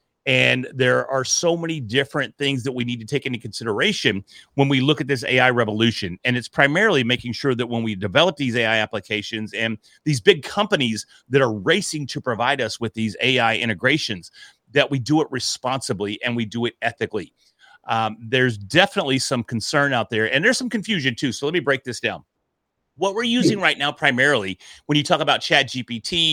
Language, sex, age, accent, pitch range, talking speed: English, male, 40-59, American, 115-145 Hz, 200 wpm